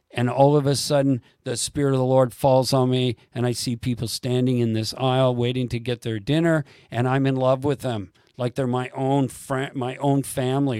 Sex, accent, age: male, American, 50-69